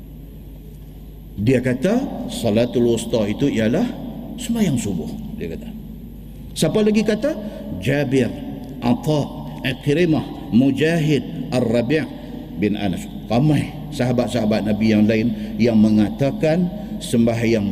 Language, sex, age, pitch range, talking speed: Malay, male, 50-69, 110-165 Hz, 100 wpm